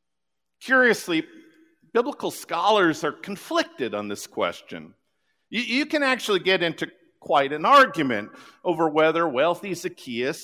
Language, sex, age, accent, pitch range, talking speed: English, male, 50-69, American, 140-185 Hz, 120 wpm